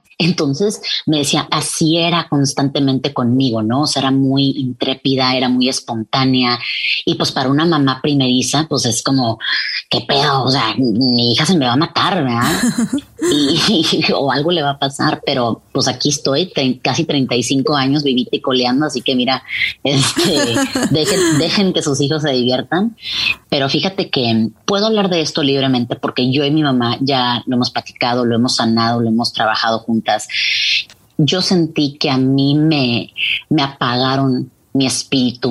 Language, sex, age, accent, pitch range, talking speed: Spanish, female, 30-49, Mexican, 120-150 Hz, 170 wpm